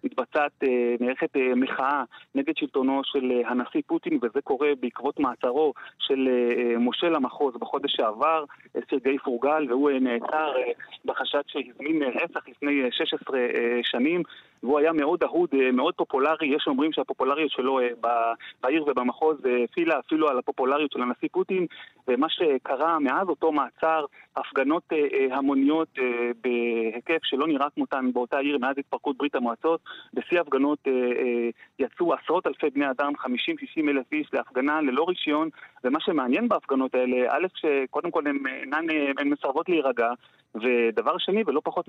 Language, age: Hebrew, 30-49